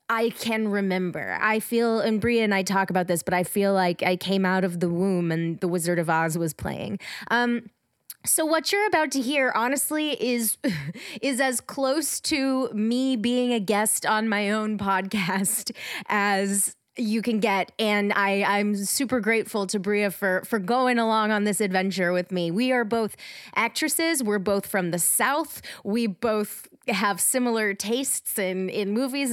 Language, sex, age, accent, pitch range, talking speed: English, female, 20-39, American, 190-240 Hz, 180 wpm